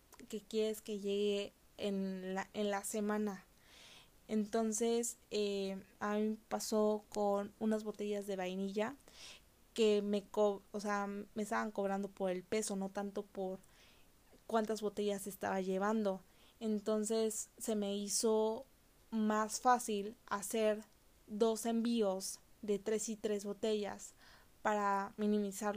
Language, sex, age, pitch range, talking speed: Spanish, female, 20-39, 200-220 Hz, 125 wpm